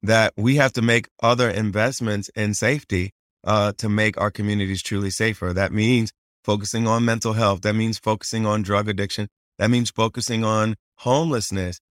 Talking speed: 165 wpm